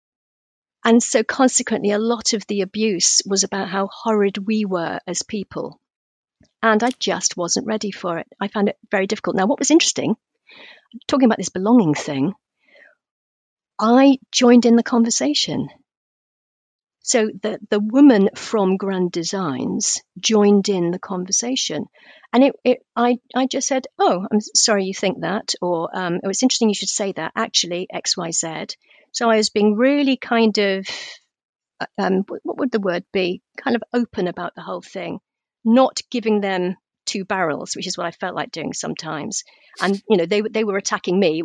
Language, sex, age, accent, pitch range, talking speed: English, female, 50-69, British, 190-250 Hz, 170 wpm